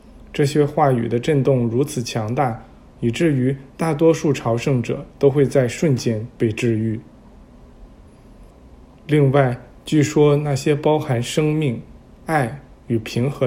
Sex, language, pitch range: male, Chinese, 120-150 Hz